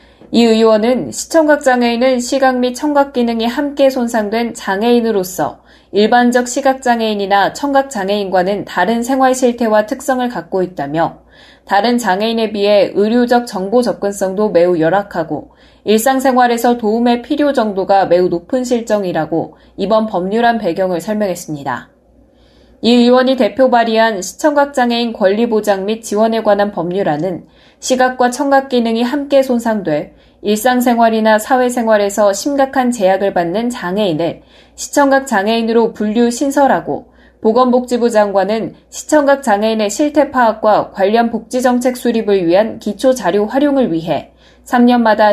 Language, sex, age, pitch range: Korean, female, 20-39, 200-255 Hz